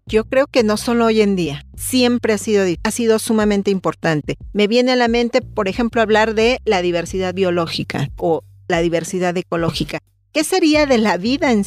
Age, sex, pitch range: 40-59, female, 195-250 Hz